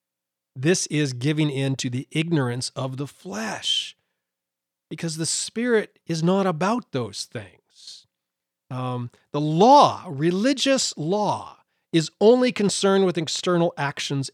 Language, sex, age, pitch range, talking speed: English, male, 30-49, 130-190 Hz, 120 wpm